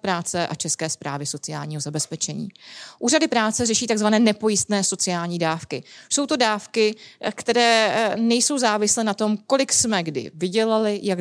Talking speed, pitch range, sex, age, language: 140 wpm, 180-215 Hz, female, 30-49, Czech